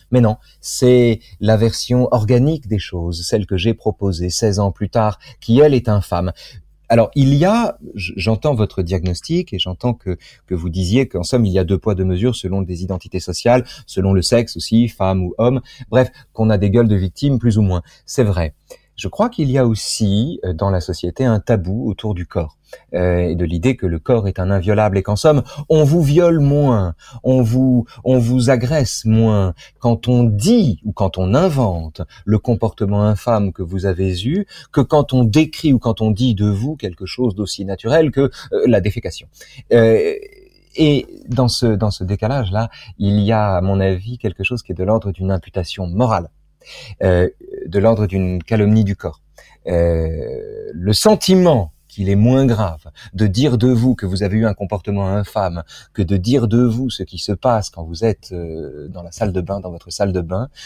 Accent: French